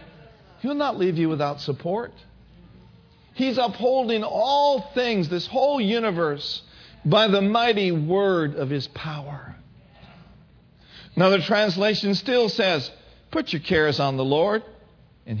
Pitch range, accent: 165-265 Hz, American